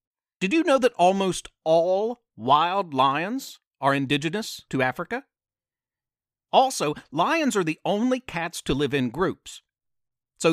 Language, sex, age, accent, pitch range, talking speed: English, male, 50-69, American, 145-220 Hz, 130 wpm